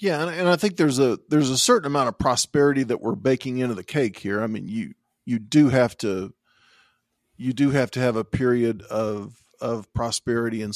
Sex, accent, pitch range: male, American, 110-130 Hz